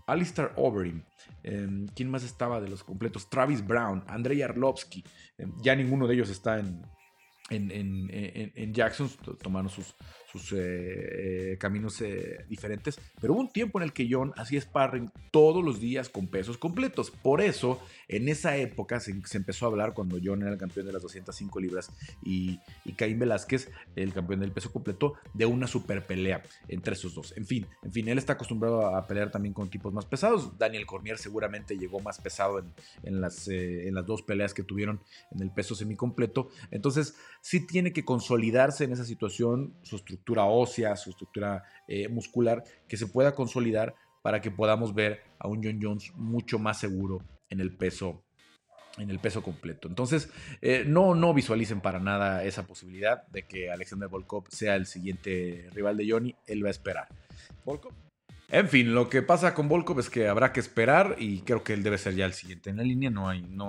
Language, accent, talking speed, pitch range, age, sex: Spanish, Mexican, 195 wpm, 95-125 Hz, 30-49, male